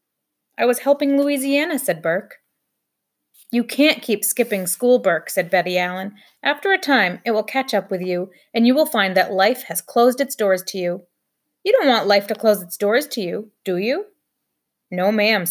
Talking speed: 195 wpm